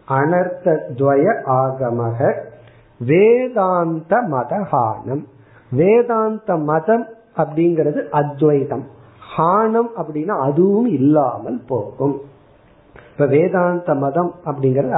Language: Tamil